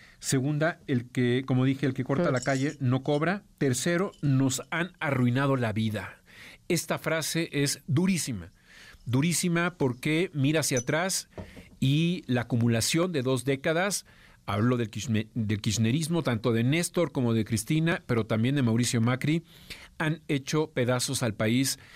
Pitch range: 120-145 Hz